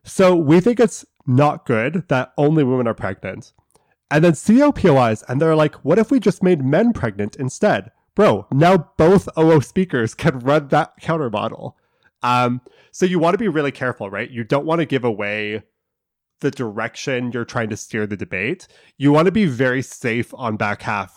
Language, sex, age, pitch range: English, male, 20-39, 115-160 Hz